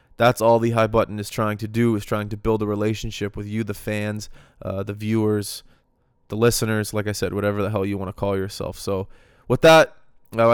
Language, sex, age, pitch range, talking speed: English, male, 20-39, 105-120 Hz, 220 wpm